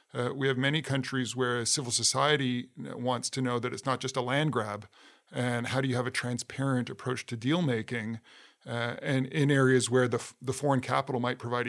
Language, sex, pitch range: English, male, 120-135 Hz